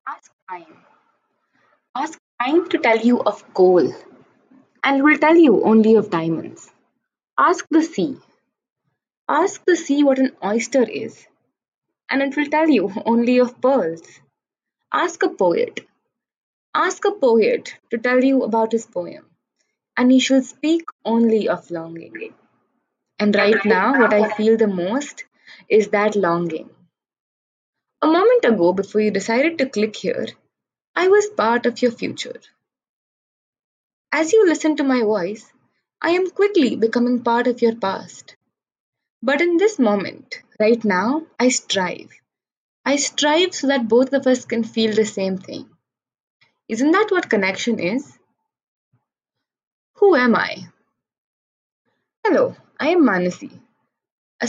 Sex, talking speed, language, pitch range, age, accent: female, 140 wpm, English, 220-315 Hz, 20-39, Indian